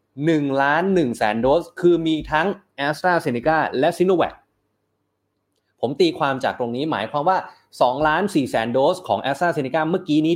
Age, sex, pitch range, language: 30-49, male, 120-170 Hz, Thai